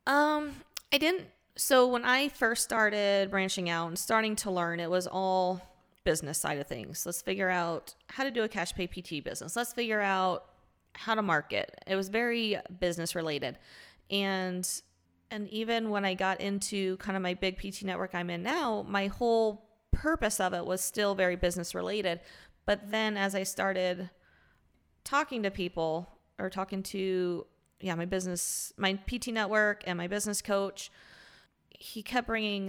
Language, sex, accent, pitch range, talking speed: English, female, American, 175-215 Hz, 170 wpm